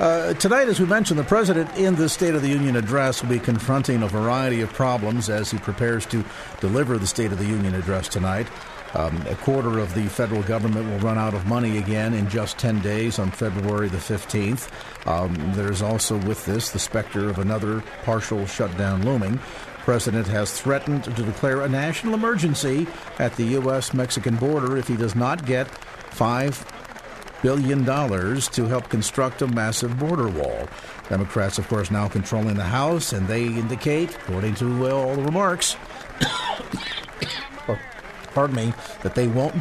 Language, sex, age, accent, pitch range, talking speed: English, male, 50-69, American, 105-135 Hz, 175 wpm